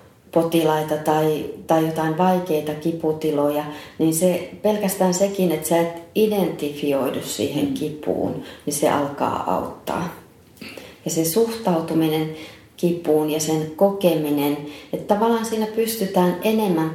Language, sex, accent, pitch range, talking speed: Finnish, female, native, 160-210 Hz, 115 wpm